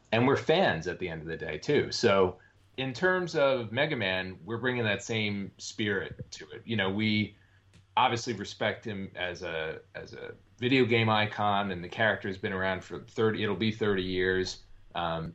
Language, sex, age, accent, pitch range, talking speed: English, male, 30-49, American, 95-115 Hz, 190 wpm